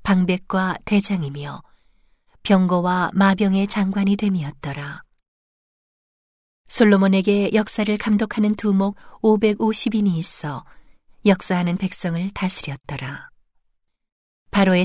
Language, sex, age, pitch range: Korean, female, 40-59, 170-200 Hz